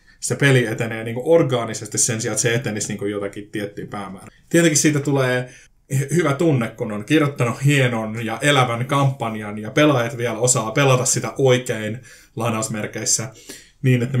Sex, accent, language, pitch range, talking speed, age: male, native, Finnish, 115-140 Hz, 150 wpm, 20-39